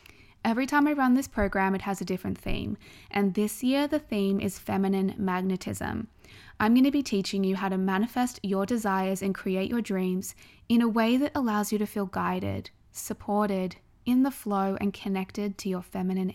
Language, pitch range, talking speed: English, 190-225 Hz, 190 wpm